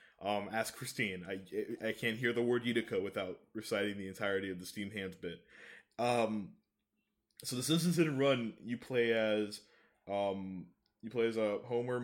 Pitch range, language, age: 100-120 Hz, English, 20-39